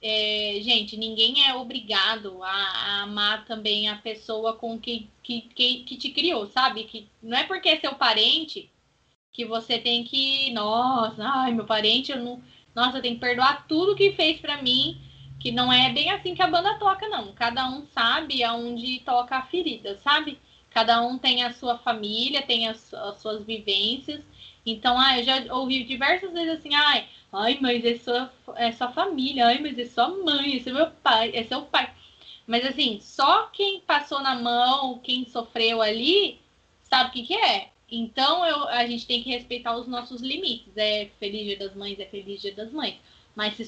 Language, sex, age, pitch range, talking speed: Portuguese, female, 20-39, 225-275 Hz, 190 wpm